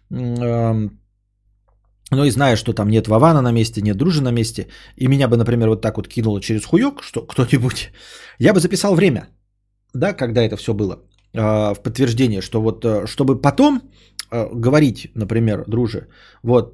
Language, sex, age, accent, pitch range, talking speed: Russian, male, 30-49, native, 105-140 Hz, 160 wpm